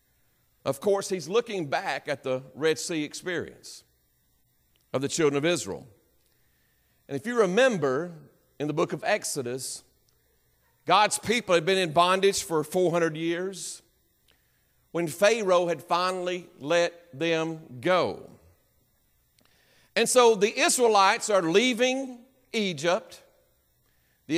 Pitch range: 130-190 Hz